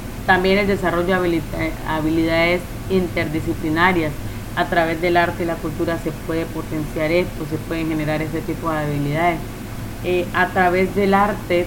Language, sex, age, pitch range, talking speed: Spanish, female, 30-49, 165-190 Hz, 150 wpm